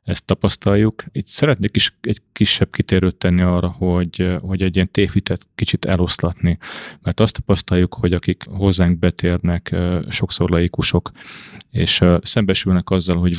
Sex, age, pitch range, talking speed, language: male, 30-49, 85-100 Hz, 135 wpm, Hungarian